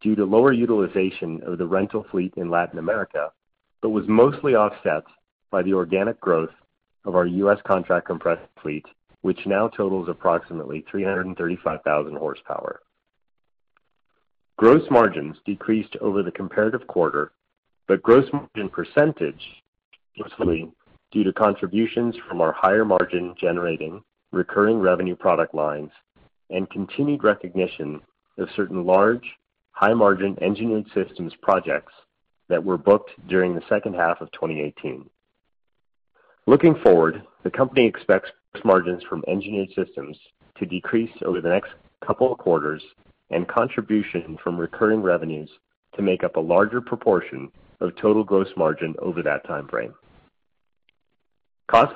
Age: 40-59